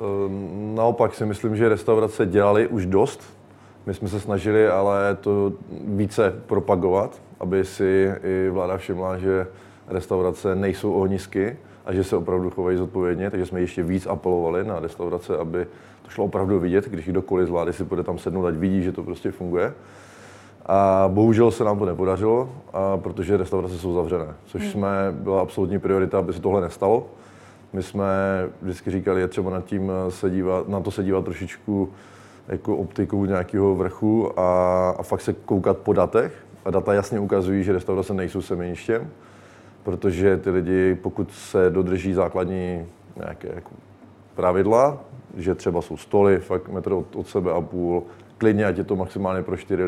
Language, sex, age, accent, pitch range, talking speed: Czech, male, 20-39, native, 90-100 Hz, 165 wpm